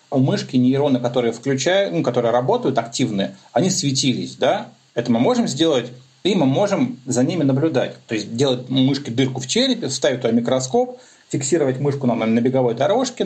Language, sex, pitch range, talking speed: Russian, male, 125-165 Hz, 180 wpm